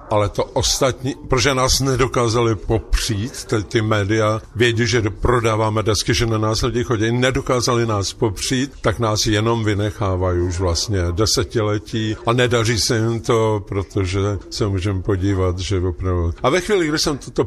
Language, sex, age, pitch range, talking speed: Slovak, male, 50-69, 100-130 Hz, 155 wpm